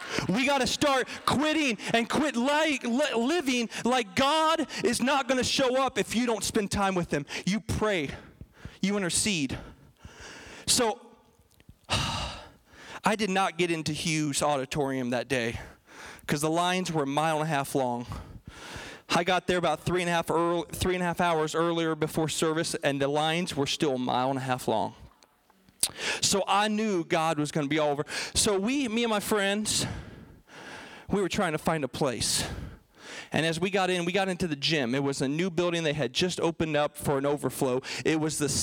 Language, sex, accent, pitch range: English, male, American, 150-200 Hz